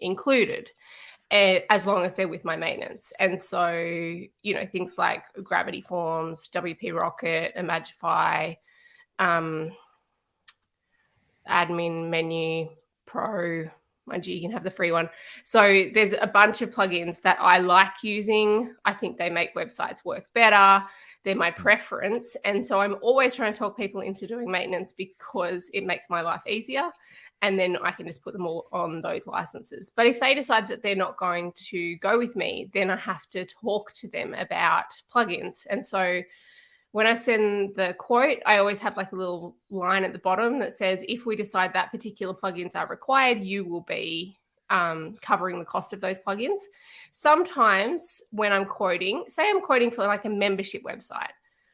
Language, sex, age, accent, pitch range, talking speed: English, female, 20-39, Australian, 180-220 Hz, 175 wpm